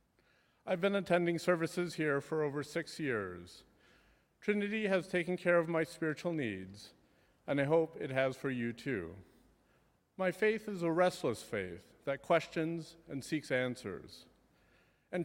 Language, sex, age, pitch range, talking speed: English, male, 40-59, 135-175 Hz, 145 wpm